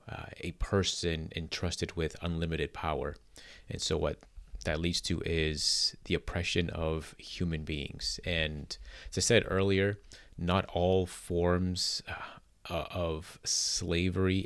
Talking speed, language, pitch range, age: 125 wpm, English, 80-90 Hz, 30-49